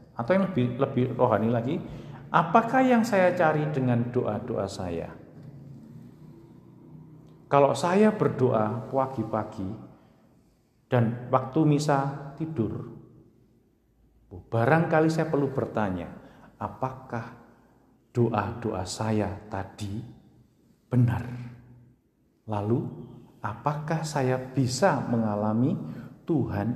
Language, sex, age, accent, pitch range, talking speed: Indonesian, male, 50-69, native, 115-160 Hz, 80 wpm